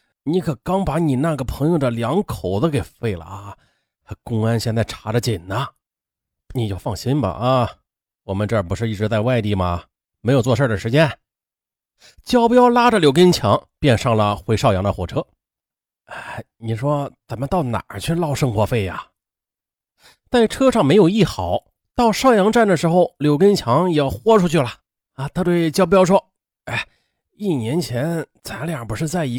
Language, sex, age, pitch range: Chinese, male, 30-49, 115-190 Hz